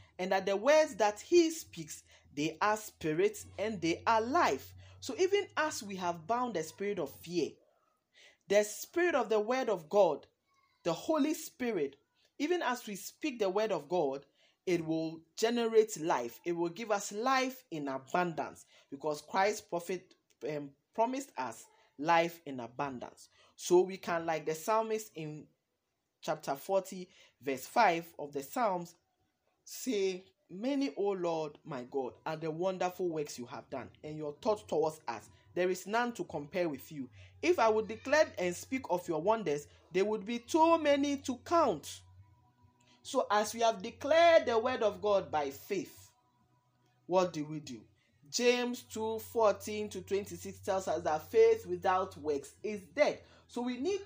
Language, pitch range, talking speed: English, 150-230 Hz, 165 wpm